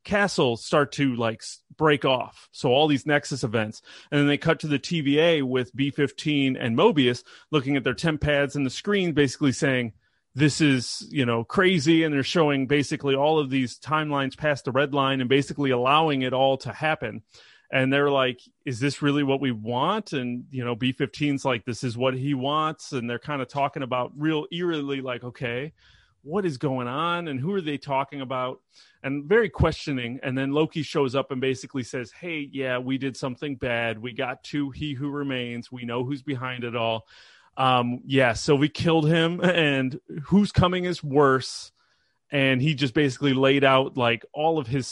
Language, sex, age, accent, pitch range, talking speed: English, male, 30-49, American, 125-150 Hz, 195 wpm